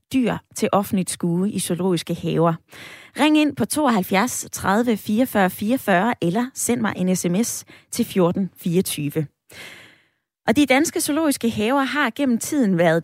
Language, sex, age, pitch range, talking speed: Danish, female, 20-39, 180-240 Hz, 145 wpm